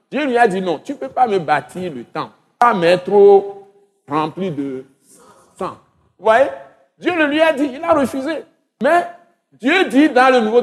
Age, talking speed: 60-79, 190 wpm